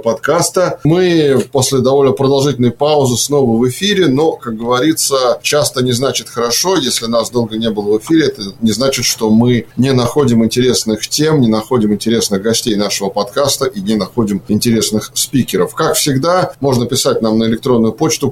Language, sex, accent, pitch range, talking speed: Russian, male, native, 115-145 Hz, 165 wpm